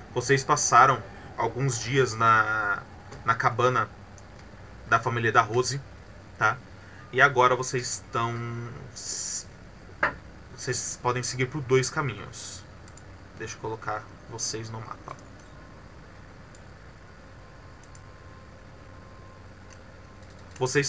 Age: 20-39